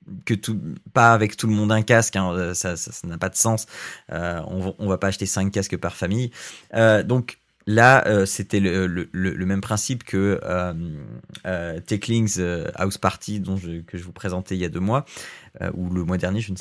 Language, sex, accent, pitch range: French, male, French, 95-120 Hz